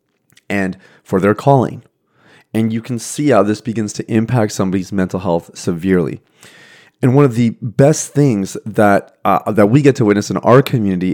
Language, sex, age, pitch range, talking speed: English, male, 30-49, 100-130 Hz, 180 wpm